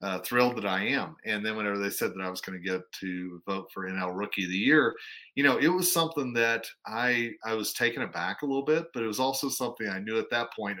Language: English